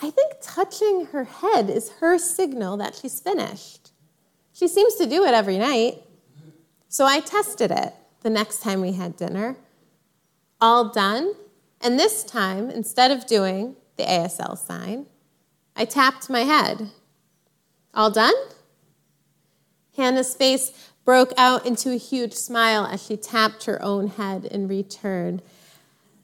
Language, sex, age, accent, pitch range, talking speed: English, female, 30-49, American, 200-285 Hz, 140 wpm